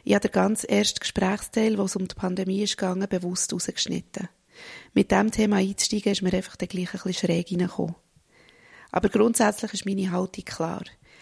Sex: female